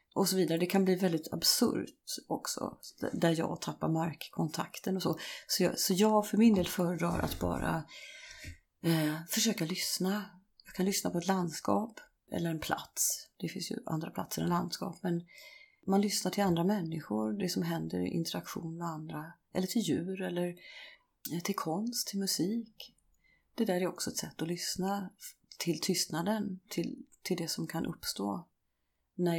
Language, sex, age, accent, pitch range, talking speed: Swedish, female, 30-49, native, 155-195 Hz, 165 wpm